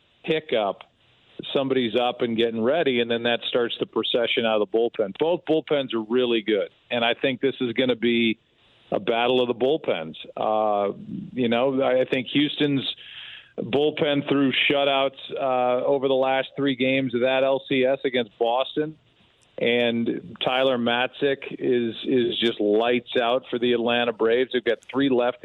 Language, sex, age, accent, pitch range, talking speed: English, male, 40-59, American, 120-140 Hz, 165 wpm